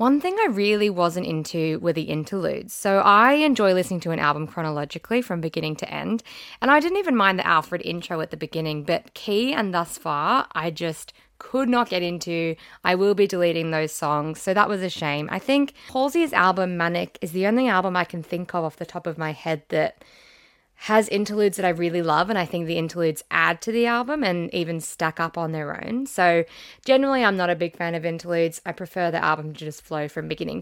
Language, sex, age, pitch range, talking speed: English, female, 20-39, 165-205 Hz, 225 wpm